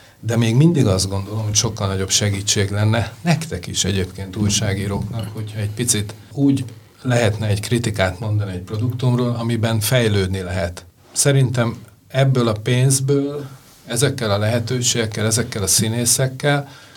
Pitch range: 100-120 Hz